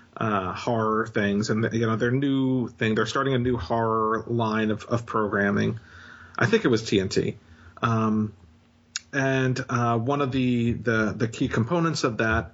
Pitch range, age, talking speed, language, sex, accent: 110-135 Hz, 40-59, 165 wpm, English, male, American